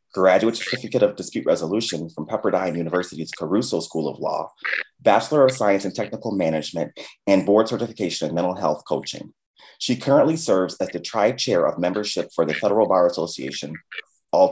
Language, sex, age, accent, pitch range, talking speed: English, male, 30-49, American, 85-110 Hz, 160 wpm